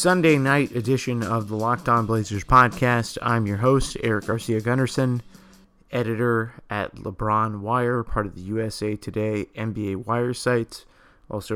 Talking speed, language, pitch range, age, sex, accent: 145 wpm, English, 110-125 Hz, 30-49, male, American